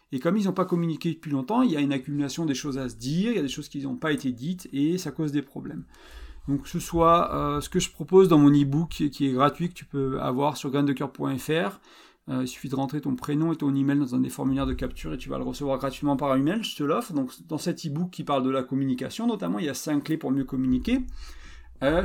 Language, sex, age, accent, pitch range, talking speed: French, male, 40-59, French, 140-175 Hz, 270 wpm